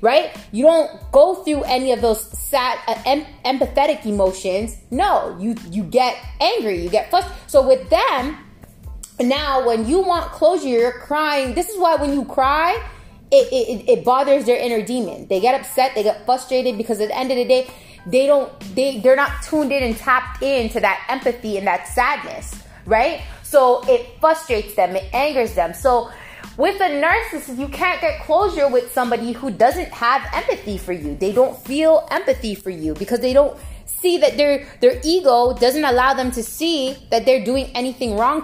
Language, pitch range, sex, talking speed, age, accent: English, 230-295 Hz, female, 185 wpm, 20-39, American